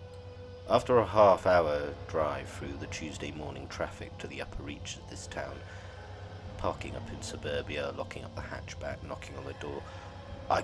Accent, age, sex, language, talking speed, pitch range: British, 30-49, male, English, 170 wpm, 85-100 Hz